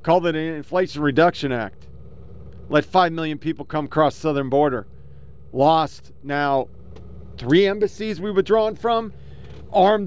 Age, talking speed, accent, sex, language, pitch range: 40-59, 135 wpm, American, male, English, 110-180 Hz